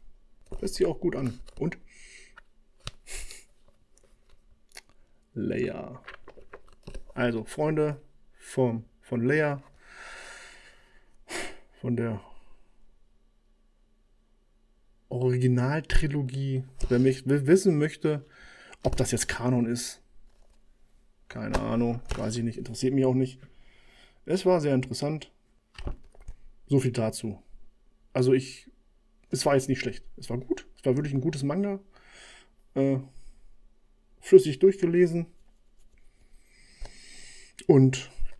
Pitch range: 120-165 Hz